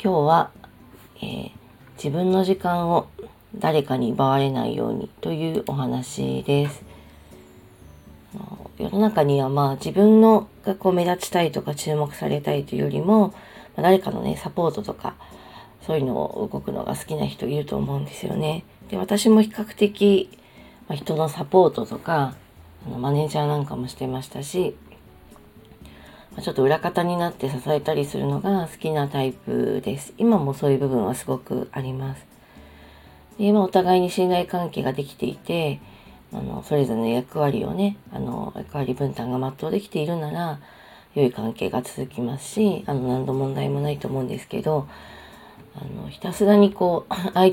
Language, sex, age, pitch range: Japanese, female, 40-59, 130-190 Hz